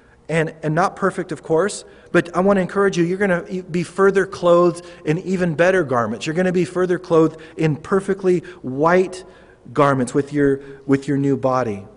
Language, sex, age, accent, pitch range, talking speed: English, male, 40-59, American, 145-185 Hz, 190 wpm